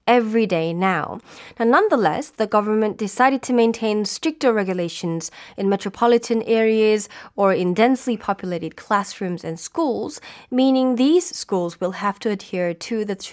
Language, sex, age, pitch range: Korean, female, 20-39, 190-235 Hz